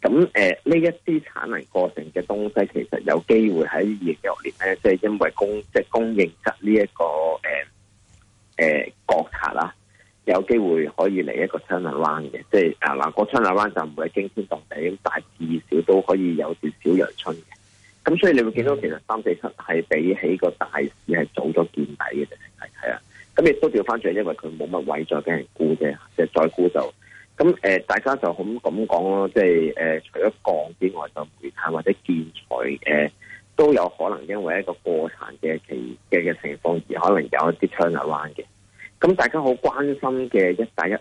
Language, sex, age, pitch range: Chinese, male, 30-49, 85-110 Hz